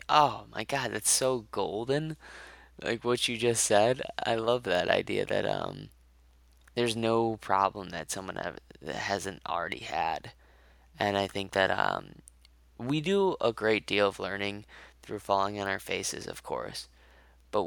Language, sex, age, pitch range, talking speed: English, male, 20-39, 65-105 Hz, 155 wpm